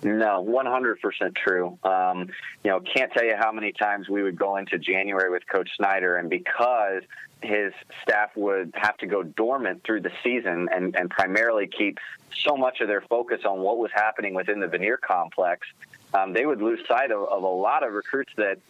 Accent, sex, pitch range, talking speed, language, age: American, male, 105-135 Hz, 195 wpm, English, 30-49